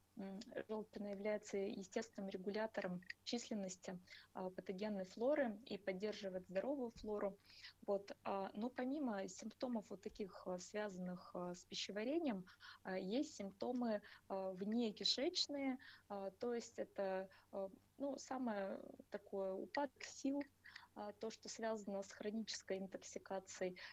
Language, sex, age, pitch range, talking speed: Russian, female, 20-39, 190-220 Hz, 95 wpm